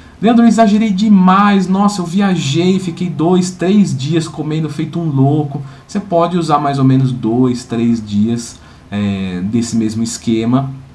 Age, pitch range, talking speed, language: 20-39, 120-175 Hz, 150 wpm, Portuguese